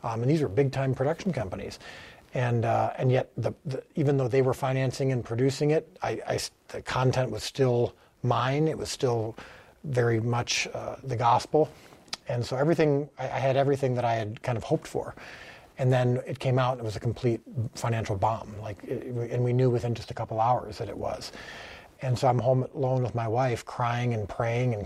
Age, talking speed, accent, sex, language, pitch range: 40-59, 210 wpm, American, male, English, 115-135 Hz